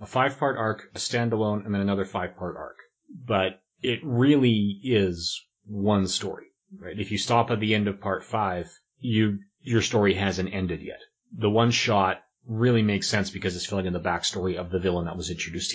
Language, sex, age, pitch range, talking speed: English, male, 30-49, 95-115 Hz, 190 wpm